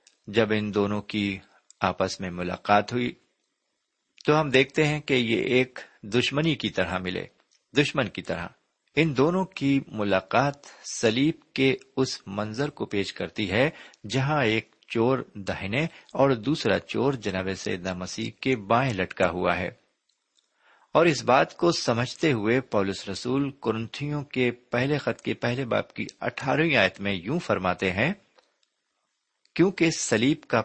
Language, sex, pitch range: Urdu, male, 95-140 Hz